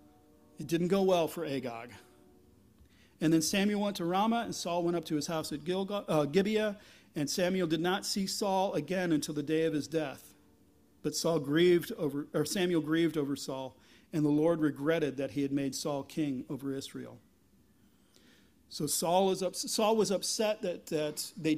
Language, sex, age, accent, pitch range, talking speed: English, male, 40-59, American, 150-190 Hz, 185 wpm